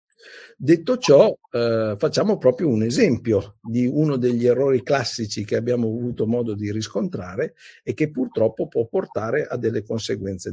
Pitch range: 110-155 Hz